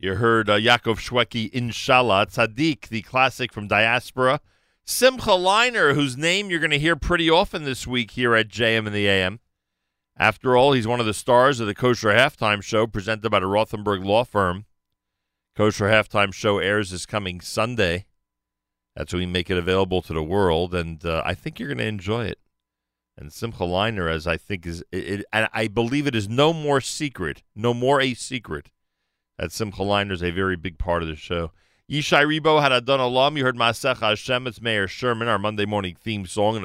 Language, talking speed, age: English, 200 wpm, 40-59